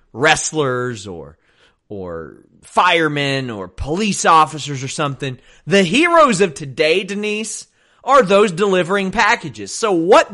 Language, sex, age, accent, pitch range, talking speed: English, male, 30-49, American, 120-185 Hz, 115 wpm